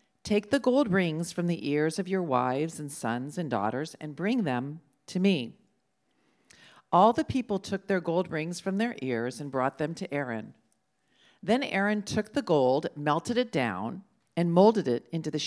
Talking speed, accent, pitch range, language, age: 180 wpm, American, 145-215 Hz, English, 50-69